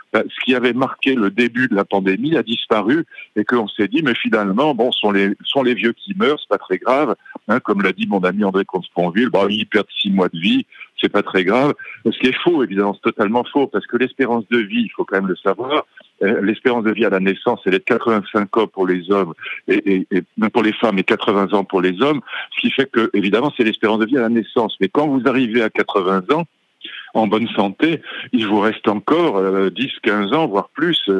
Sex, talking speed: male, 240 wpm